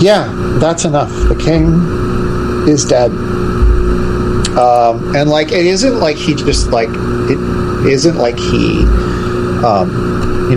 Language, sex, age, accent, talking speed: English, male, 40-59, American, 125 wpm